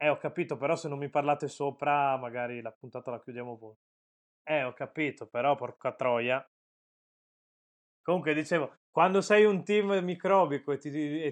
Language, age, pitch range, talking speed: Italian, 20-39, 125-165 Hz, 165 wpm